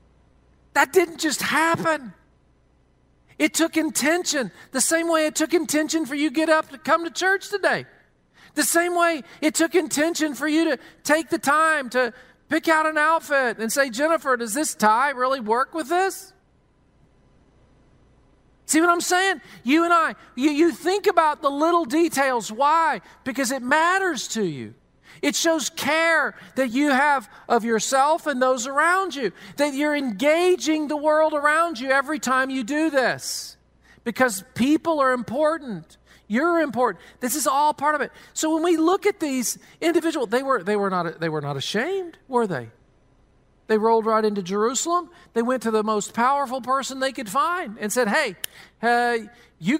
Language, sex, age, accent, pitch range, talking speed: English, male, 40-59, American, 240-320 Hz, 170 wpm